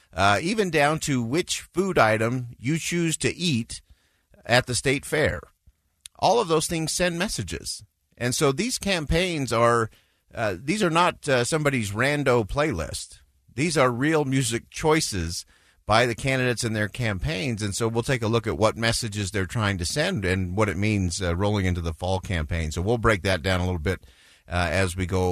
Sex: male